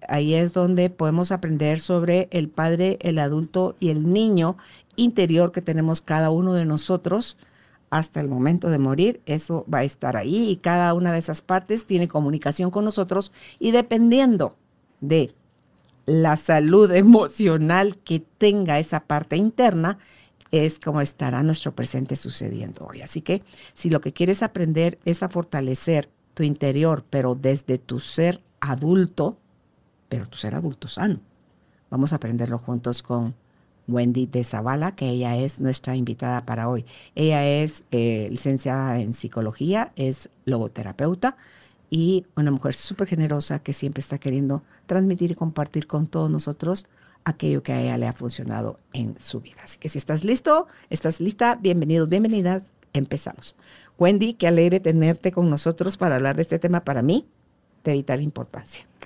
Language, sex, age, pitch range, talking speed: Spanish, female, 50-69, 135-180 Hz, 155 wpm